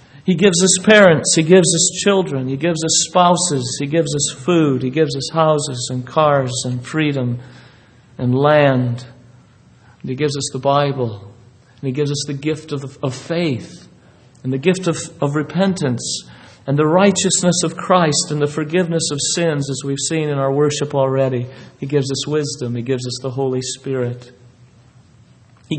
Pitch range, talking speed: 125-160 Hz, 165 wpm